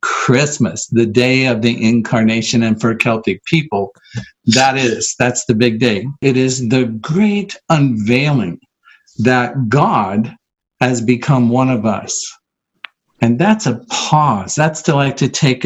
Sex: male